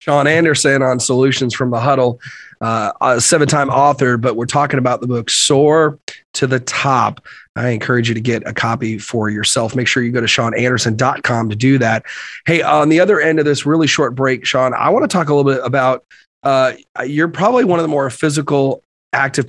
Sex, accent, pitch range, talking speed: male, American, 125-155 Hz, 205 wpm